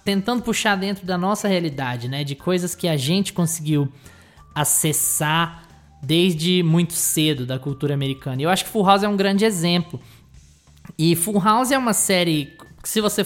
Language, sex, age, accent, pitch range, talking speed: Portuguese, male, 20-39, Brazilian, 145-195 Hz, 170 wpm